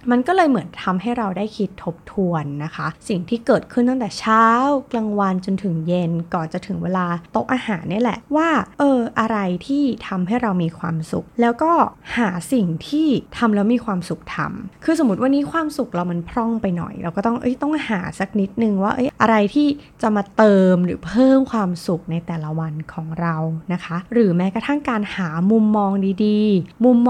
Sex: female